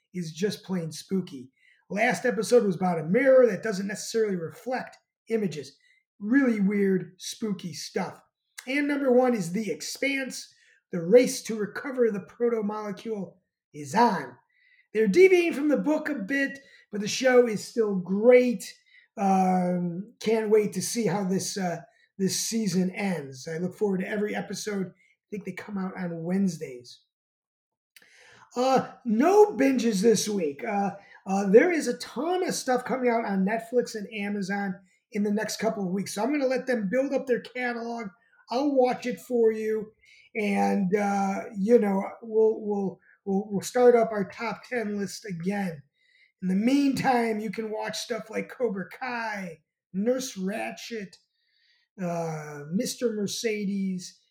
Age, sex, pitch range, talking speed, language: 30-49, male, 190-245 Hz, 155 wpm, English